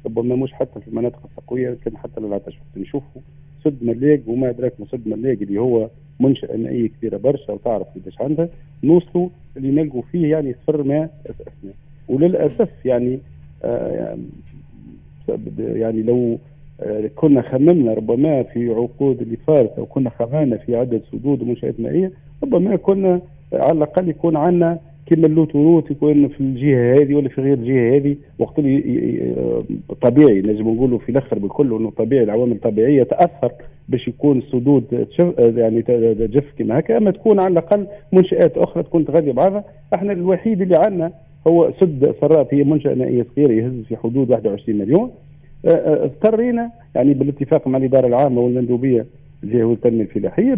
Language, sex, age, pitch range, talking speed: Arabic, male, 50-69, 120-155 Hz, 145 wpm